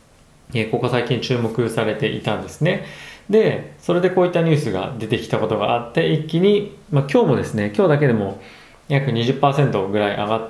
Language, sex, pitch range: Japanese, male, 105-150 Hz